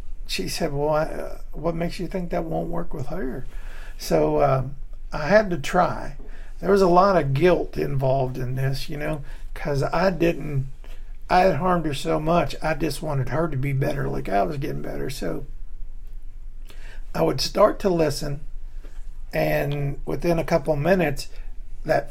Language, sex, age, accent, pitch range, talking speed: English, male, 50-69, American, 135-160 Hz, 170 wpm